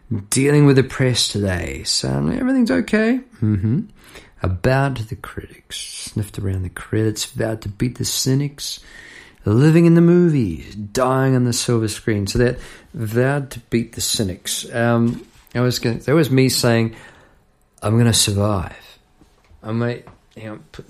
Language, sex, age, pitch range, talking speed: English, male, 40-59, 100-130 Hz, 150 wpm